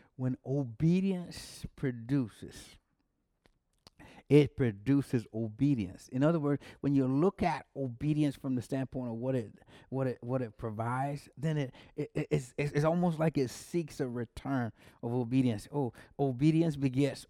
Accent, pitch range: American, 115-145 Hz